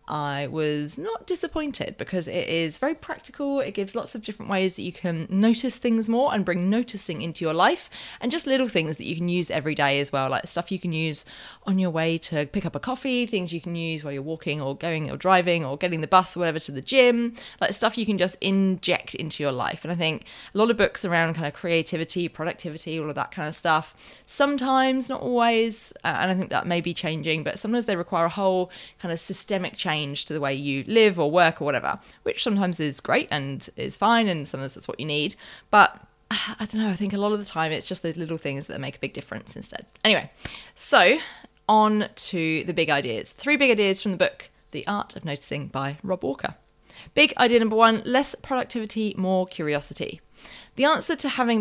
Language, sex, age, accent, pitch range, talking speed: English, female, 20-39, British, 160-230 Hz, 225 wpm